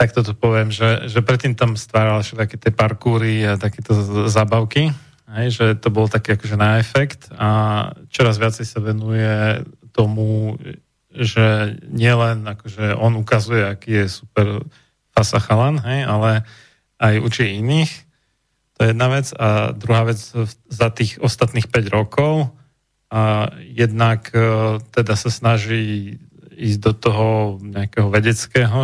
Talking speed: 135 wpm